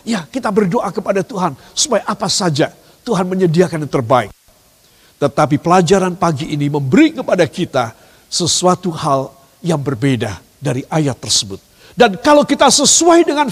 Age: 50-69